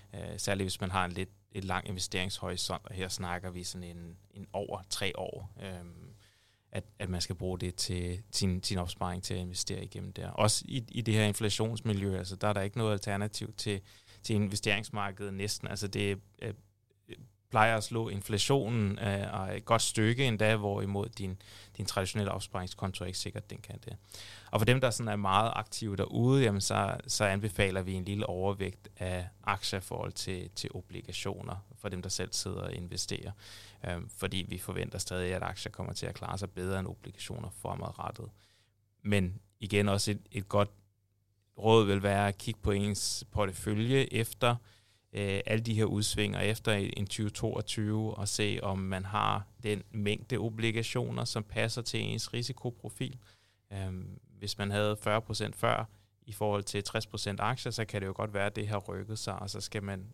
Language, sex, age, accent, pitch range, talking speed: Danish, male, 20-39, native, 95-110 Hz, 180 wpm